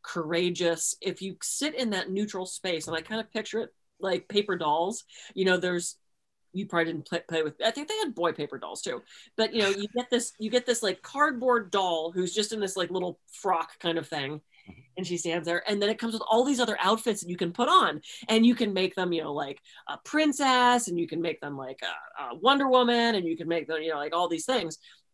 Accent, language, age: American, English, 30-49